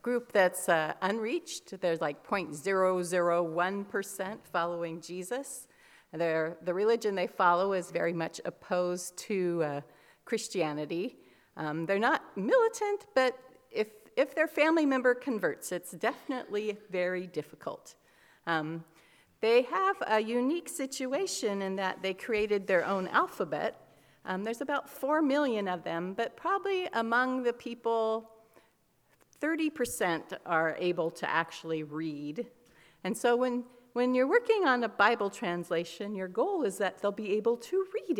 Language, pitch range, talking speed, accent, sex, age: English, 175-235 Hz, 135 wpm, American, female, 40-59